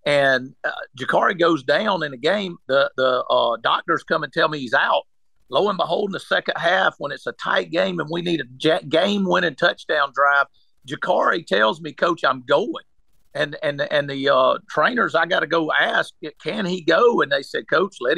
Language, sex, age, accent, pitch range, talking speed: English, male, 50-69, American, 150-205 Hz, 210 wpm